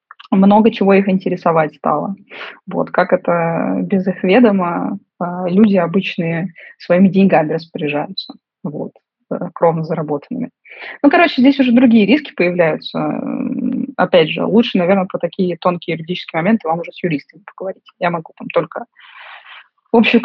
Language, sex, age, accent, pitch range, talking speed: Russian, female, 20-39, native, 180-245 Hz, 135 wpm